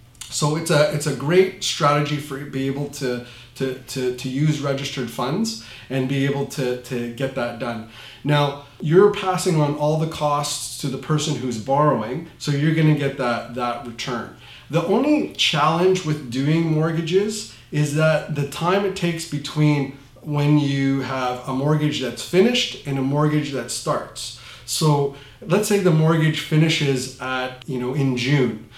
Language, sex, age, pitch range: English, male, 30-49, 130-155 Hz